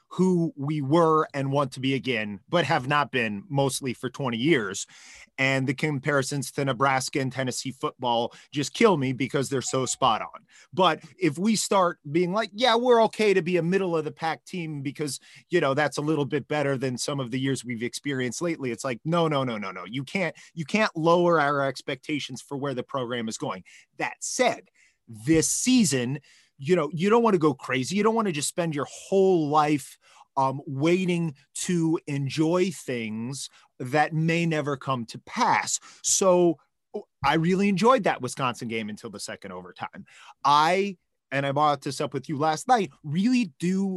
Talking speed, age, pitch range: 190 wpm, 30-49, 135-175 Hz